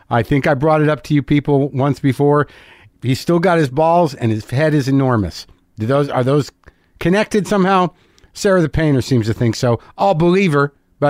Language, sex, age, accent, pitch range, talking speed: English, male, 50-69, American, 110-160 Hz, 205 wpm